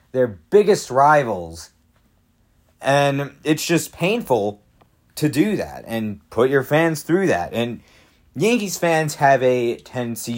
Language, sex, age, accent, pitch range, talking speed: English, male, 40-59, American, 115-170 Hz, 125 wpm